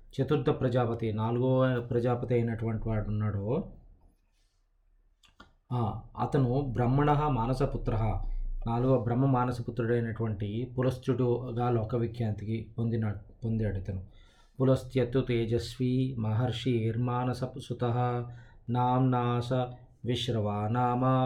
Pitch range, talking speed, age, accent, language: 110-125 Hz, 75 wpm, 20-39, native, Telugu